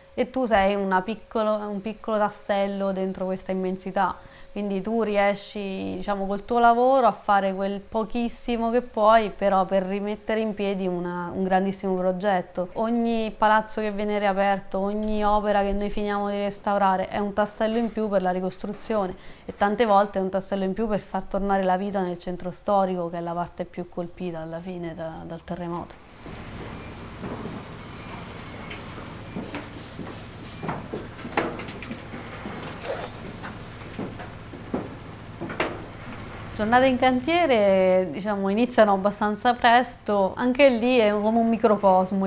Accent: native